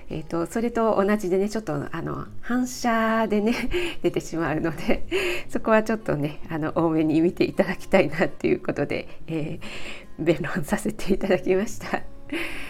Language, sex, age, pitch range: Japanese, female, 50-69, 170-215 Hz